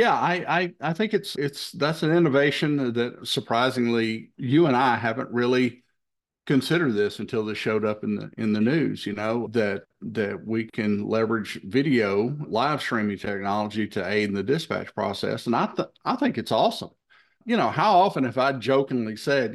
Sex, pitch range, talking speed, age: male, 110-130 Hz, 185 wpm, 50-69